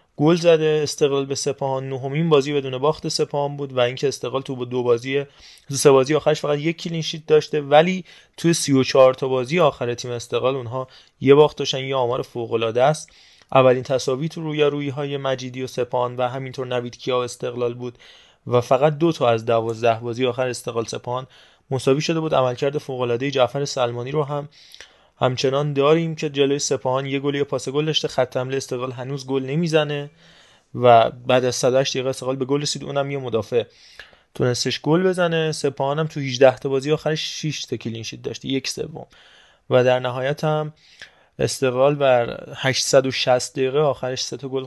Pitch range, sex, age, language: 125-150 Hz, male, 20-39, Persian